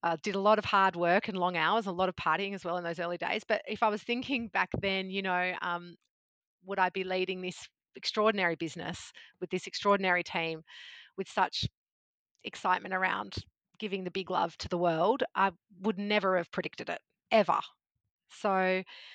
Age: 30-49